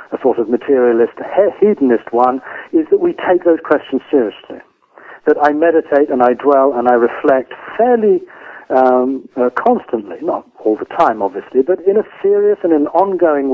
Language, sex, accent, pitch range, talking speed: English, male, British, 130-170 Hz, 170 wpm